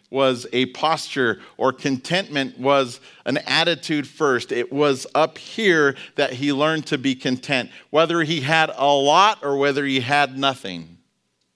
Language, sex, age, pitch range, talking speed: English, male, 50-69, 125-155 Hz, 150 wpm